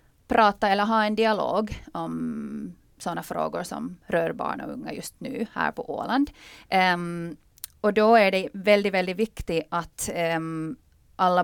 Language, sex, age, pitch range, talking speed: Swedish, female, 20-39, 170-215 Hz, 150 wpm